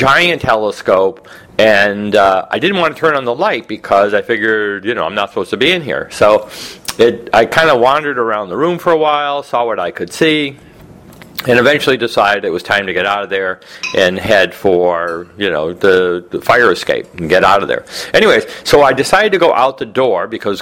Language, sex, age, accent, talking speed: English, male, 40-59, American, 220 wpm